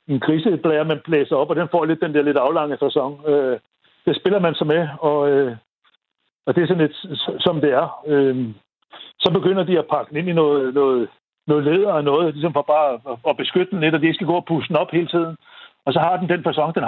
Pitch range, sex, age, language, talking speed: 145-180 Hz, male, 60-79, Danish, 235 wpm